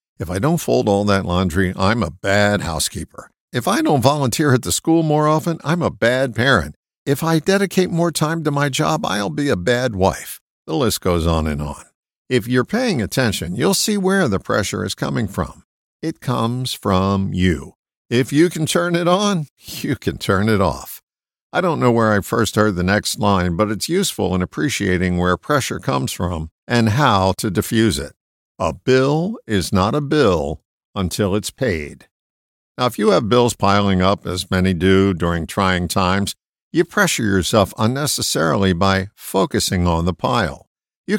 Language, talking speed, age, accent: English, 185 wpm, 60-79, American